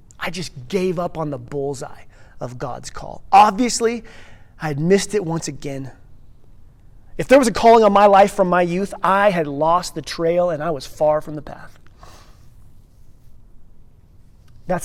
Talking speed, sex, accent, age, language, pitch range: 165 wpm, male, American, 30-49, English, 120-190 Hz